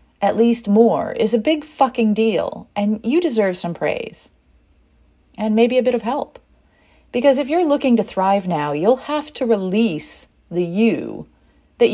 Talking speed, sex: 165 wpm, female